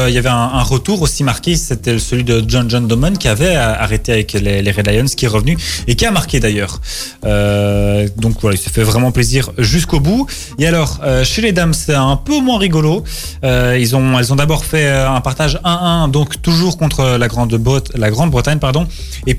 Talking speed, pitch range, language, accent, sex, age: 205 wpm, 110-140 Hz, French, French, male, 20-39